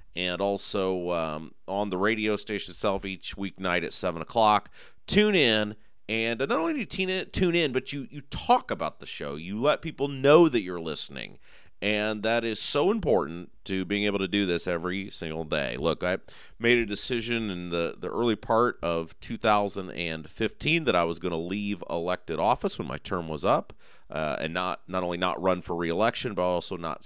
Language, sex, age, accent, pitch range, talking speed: English, male, 30-49, American, 90-130 Hz, 195 wpm